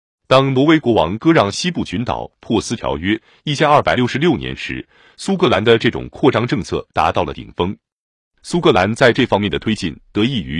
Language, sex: Chinese, male